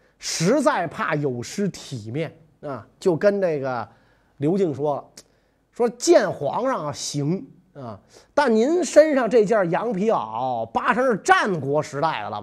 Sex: male